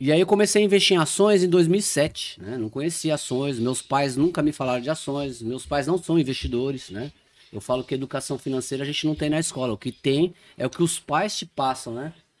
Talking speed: 235 wpm